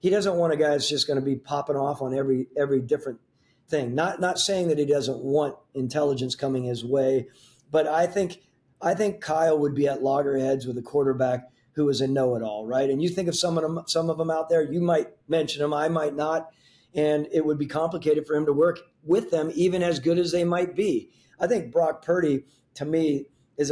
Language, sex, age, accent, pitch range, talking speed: English, male, 40-59, American, 135-160 Hz, 230 wpm